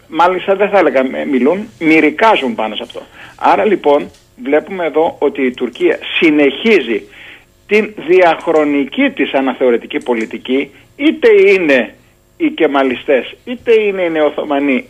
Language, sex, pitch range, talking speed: Greek, male, 150-240 Hz, 120 wpm